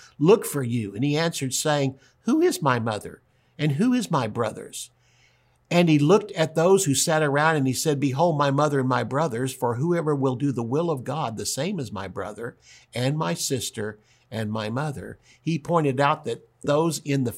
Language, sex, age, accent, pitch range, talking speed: English, male, 60-79, American, 115-150 Hz, 205 wpm